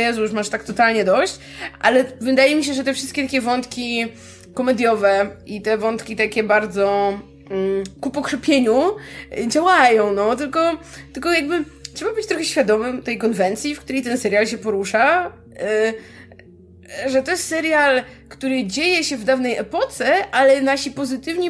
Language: Polish